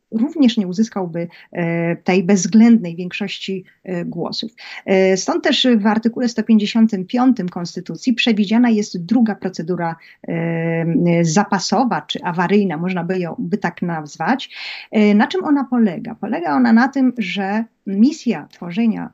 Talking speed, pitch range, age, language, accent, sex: 130 wpm, 190-245 Hz, 30-49, Polish, native, female